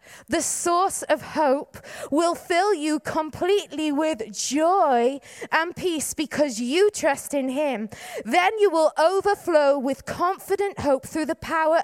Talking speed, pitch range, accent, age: 135 wpm, 320-430 Hz, British, 20-39